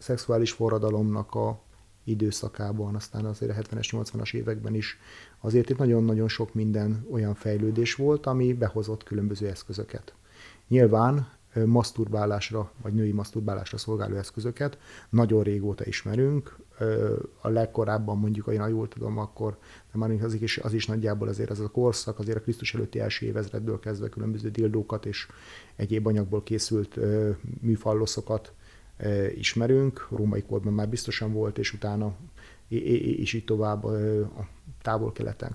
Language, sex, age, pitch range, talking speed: Hungarian, male, 30-49, 105-115 Hz, 130 wpm